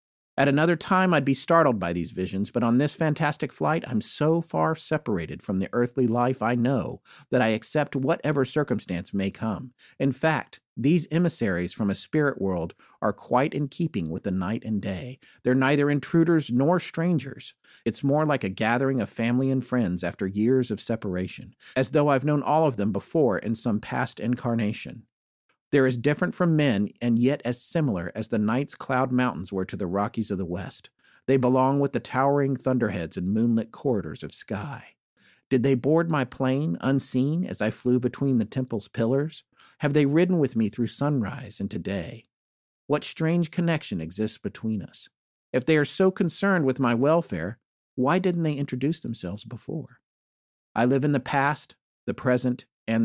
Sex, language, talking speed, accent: male, English, 180 wpm, American